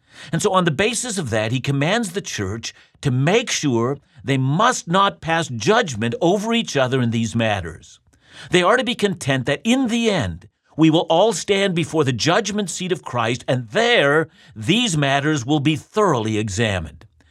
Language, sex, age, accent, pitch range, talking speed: English, male, 50-69, American, 115-180 Hz, 180 wpm